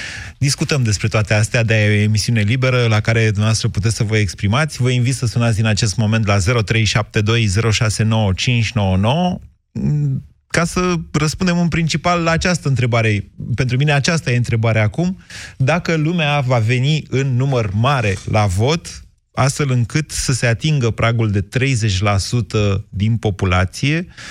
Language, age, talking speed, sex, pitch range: Romanian, 30-49, 140 wpm, male, 105-135 Hz